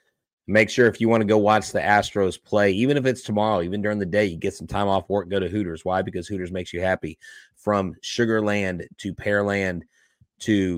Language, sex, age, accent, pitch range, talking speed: English, male, 30-49, American, 90-105 Hz, 215 wpm